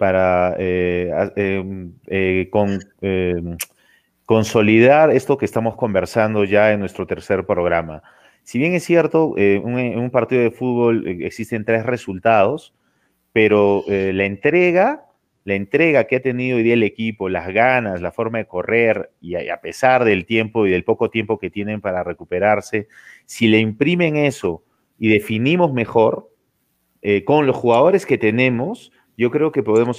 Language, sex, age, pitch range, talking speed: Spanish, male, 30-49, 100-125 Hz, 160 wpm